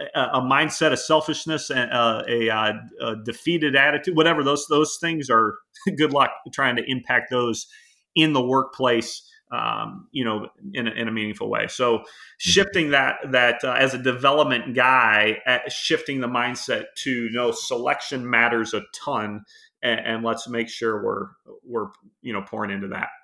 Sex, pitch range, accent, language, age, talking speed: male, 115-150 Hz, American, English, 40-59, 175 wpm